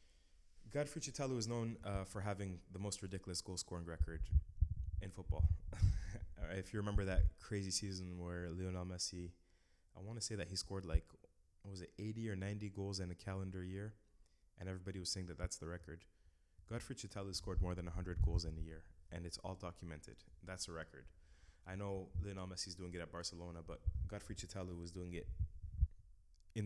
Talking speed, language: 185 wpm, English